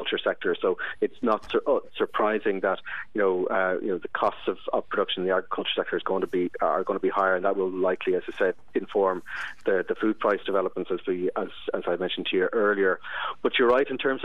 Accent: Irish